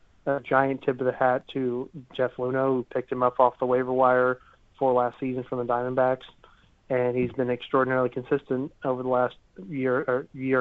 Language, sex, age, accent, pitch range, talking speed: English, male, 30-49, American, 125-135 Hz, 190 wpm